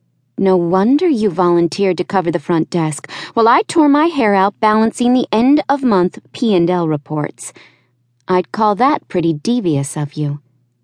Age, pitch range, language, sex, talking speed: 30-49, 140-215 Hz, English, female, 150 wpm